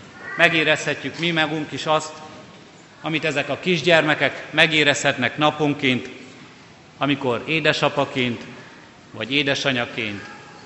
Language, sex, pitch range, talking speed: Hungarian, male, 125-150 Hz, 85 wpm